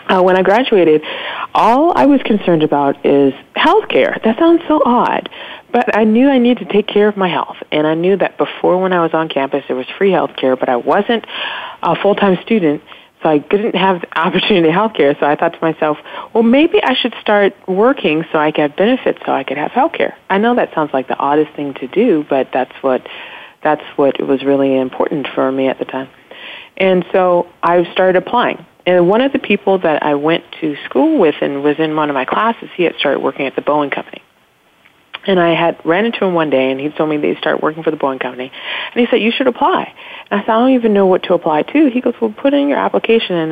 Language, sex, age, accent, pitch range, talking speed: English, female, 40-59, American, 150-220 Hz, 245 wpm